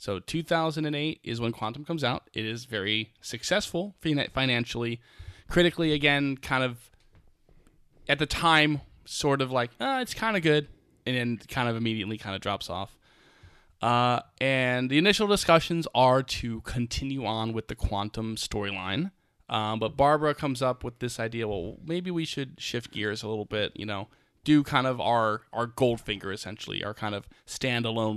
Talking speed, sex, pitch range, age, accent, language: 170 wpm, male, 110-140 Hz, 10-29, American, English